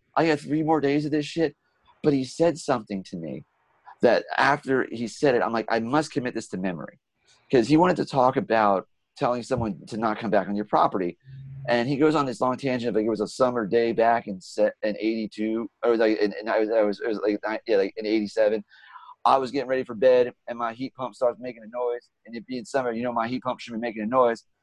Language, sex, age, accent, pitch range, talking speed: English, male, 30-49, American, 115-135 Hz, 245 wpm